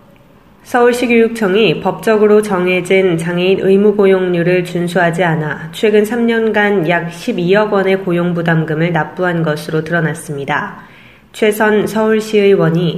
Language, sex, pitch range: Korean, female, 170-205 Hz